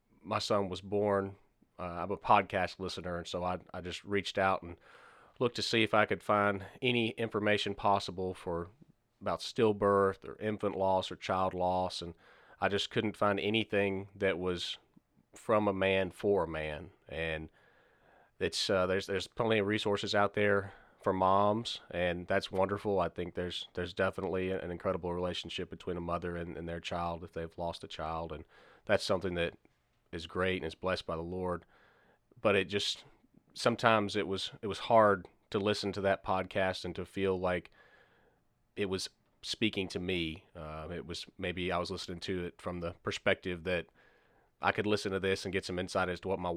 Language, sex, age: English, male, 30-49